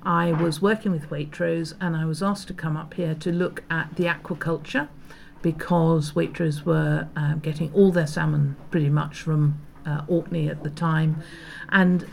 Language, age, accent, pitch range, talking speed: English, 50-69, British, 155-180 Hz, 175 wpm